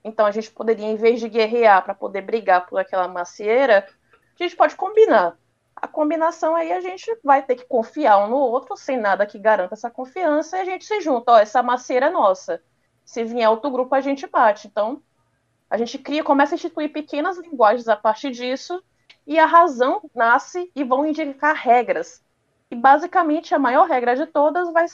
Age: 20-39